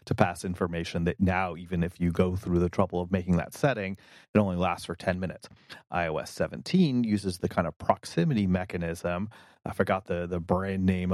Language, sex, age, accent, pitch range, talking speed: English, male, 30-49, American, 90-105 Hz, 195 wpm